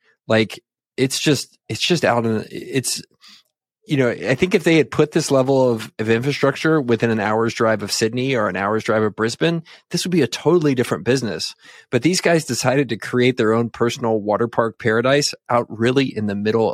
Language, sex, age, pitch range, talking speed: English, male, 20-39, 110-135 Hz, 205 wpm